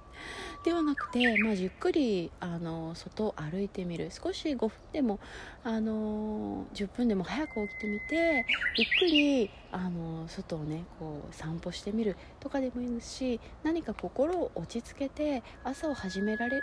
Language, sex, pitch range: Japanese, female, 175-245 Hz